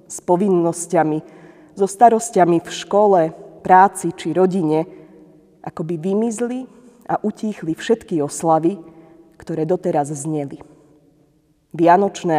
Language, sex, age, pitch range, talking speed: Slovak, female, 20-39, 160-190 Hz, 90 wpm